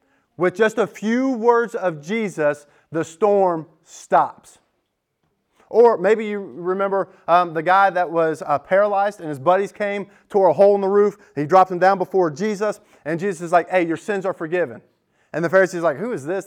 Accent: American